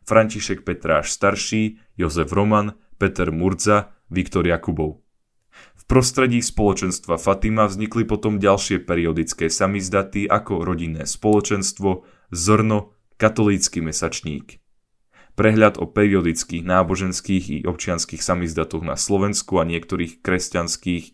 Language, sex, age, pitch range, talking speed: Slovak, male, 10-29, 90-110 Hz, 100 wpm